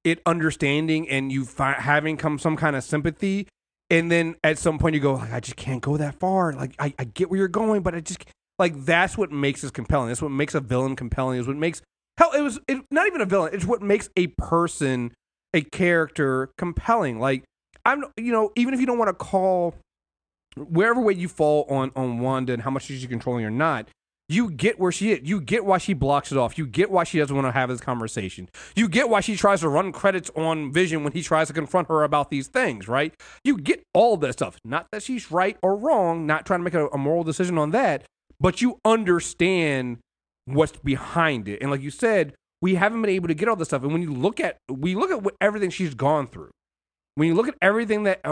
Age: 30-49